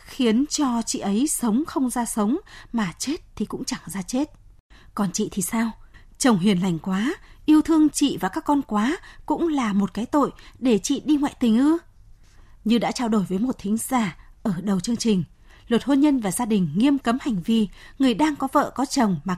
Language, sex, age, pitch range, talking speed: Vietnamese, female, 20-39, 210-285 Hz, 215 wpm